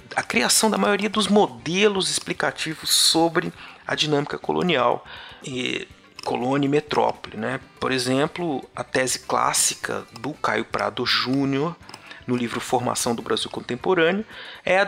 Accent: Brazilian